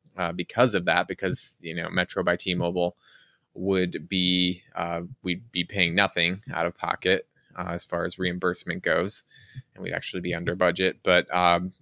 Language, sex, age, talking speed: English, male, 20-39, 175 wpm